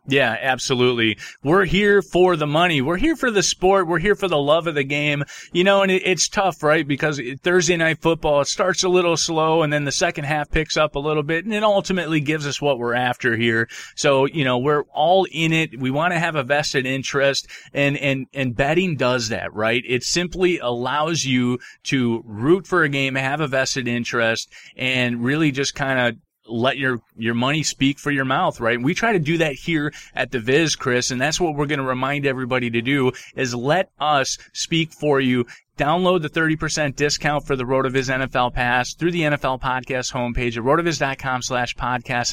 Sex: male